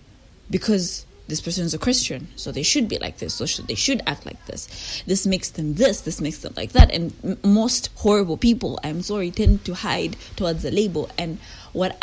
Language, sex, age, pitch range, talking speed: English, female, 20-39, 155-200 Hz, 215 wpm